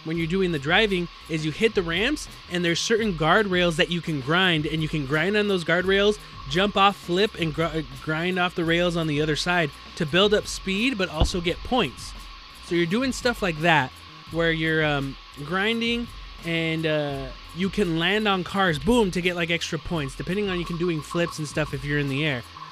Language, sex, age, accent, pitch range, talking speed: English, male, 20-39, American, 160-200 Hz, 215 wpm